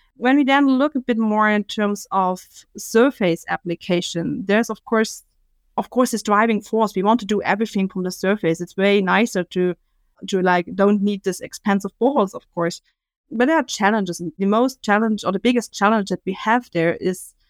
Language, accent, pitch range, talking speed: English, German, 180-220 Hz, 195 wpm